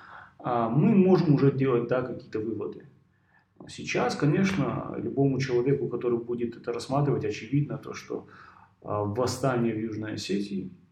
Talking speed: 120 wpm